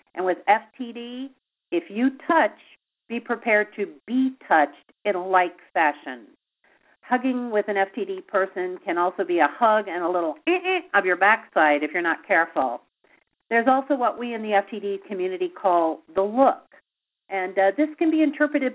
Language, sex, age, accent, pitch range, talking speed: English, female, 50-69, American, 185-265 Hz, 175 wpm